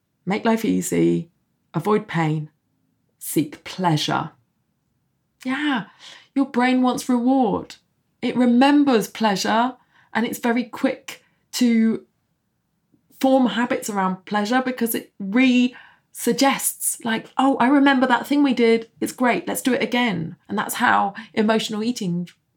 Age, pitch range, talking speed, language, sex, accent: 20-39, 175-235 Hz, 120 wpm, English, female, British